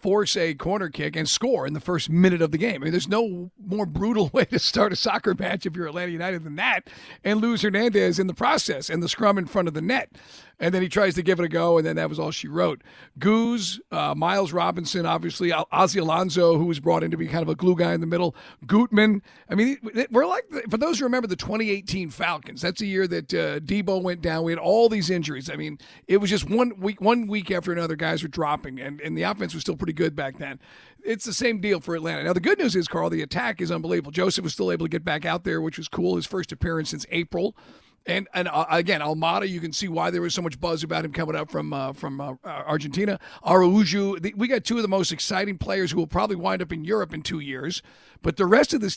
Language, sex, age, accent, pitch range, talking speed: English, male, 40-59, American, 170-215 Hz, 255 wpm